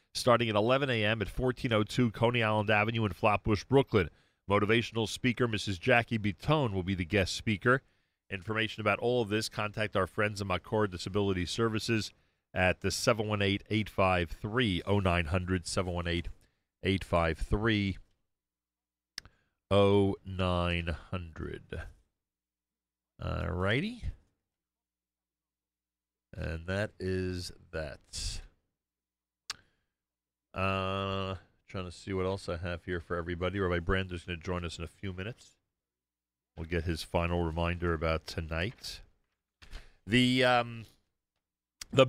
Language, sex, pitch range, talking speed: English, male, 85-120 Hz, 110 wpm